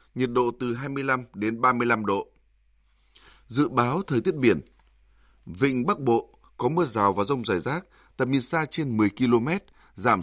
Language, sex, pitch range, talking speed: Vietnamese, male, 105-140 Hz, 170 wpm